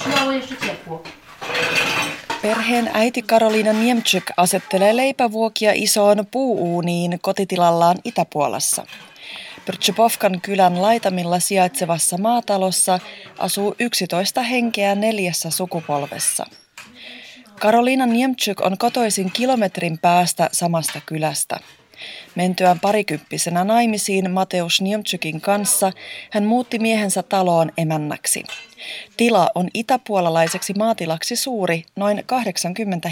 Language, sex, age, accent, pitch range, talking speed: Finnish, female, 30-49, native, 170-225 Hz, 85 wpm